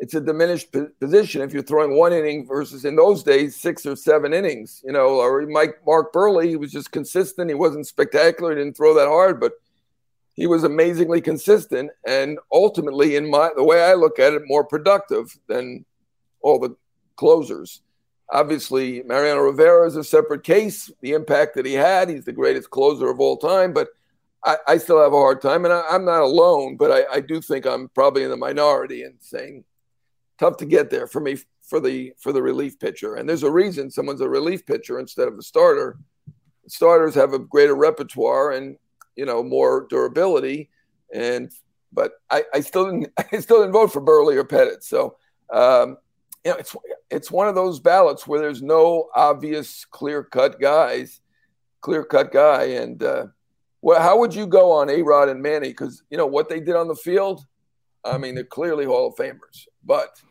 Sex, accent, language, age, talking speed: male, American, English, 60-79, 195 wpm